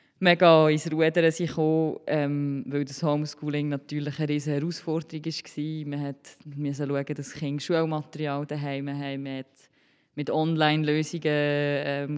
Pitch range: 140-160 Hz